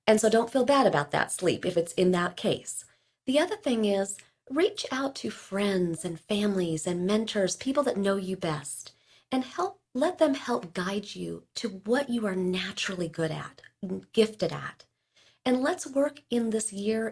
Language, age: English, 40-59